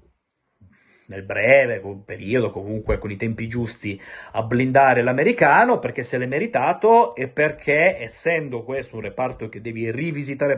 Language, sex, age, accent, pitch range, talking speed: Italian, male, 30-49, native, 115-150 Hz, 135 wpm